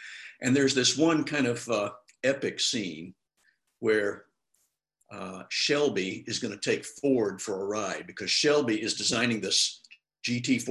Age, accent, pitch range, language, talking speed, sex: 60-79, American, 115-145 Hz, English, 145 wpm, male